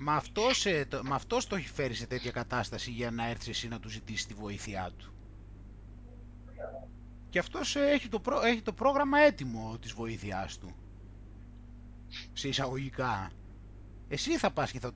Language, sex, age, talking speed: Greek, male, 30-49, 165 wpm